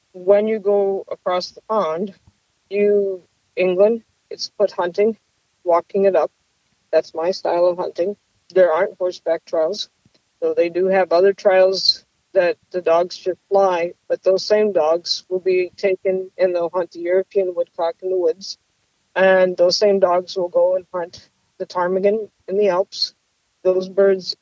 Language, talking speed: English, 160 wpm